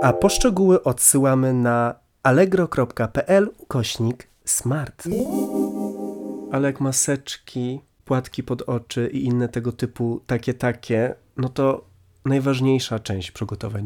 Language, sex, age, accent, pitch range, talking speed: Polish, male, 30-49, native, 115-135 Hz, 105 wpm